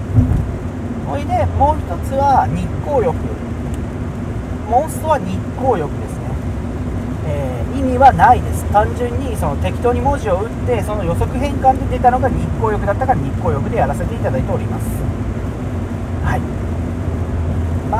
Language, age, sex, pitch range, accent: Japanese, 40-59, male, 85-115 Hz, native